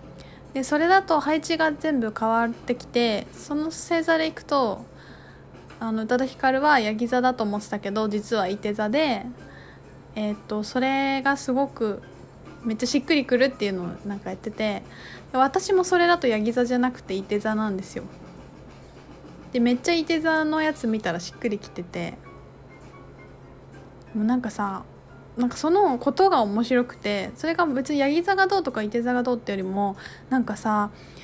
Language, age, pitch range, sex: Japanese, 20-39, 210-290 Hz, female